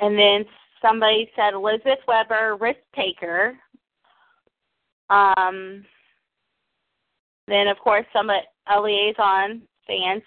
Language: English